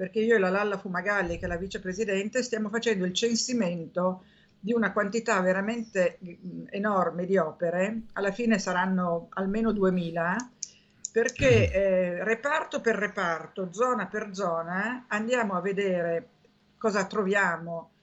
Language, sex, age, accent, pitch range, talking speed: Italian, female, 50-69, native, 185-220 Hz, 130 wpm